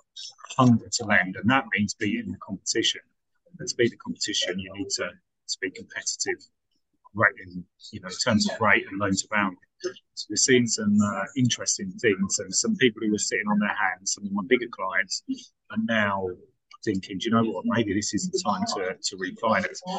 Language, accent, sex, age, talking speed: English, British, male, 30-49, 205 wpm